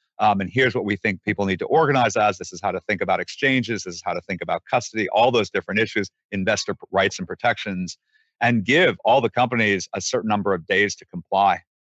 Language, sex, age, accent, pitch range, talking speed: English, male, 40-59, American, 90-105 Hz, 225 wpm